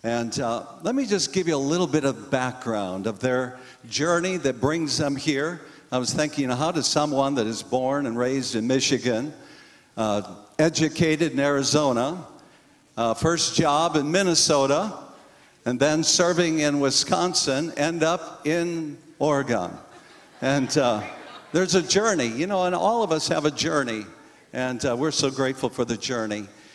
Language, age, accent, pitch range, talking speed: English, 60-79, American, 125-160 Hz, 160 wpm